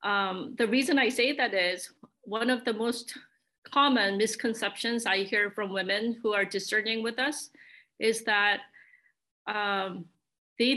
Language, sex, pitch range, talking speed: English, female, 215-280 Hz, 145 wpm